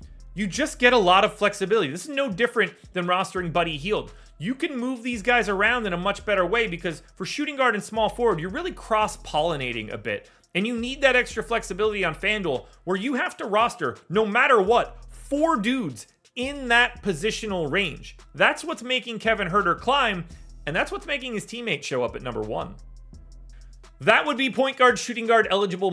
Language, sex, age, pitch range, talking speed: English, male, 30-49, 155-220 Hz, 195 wpm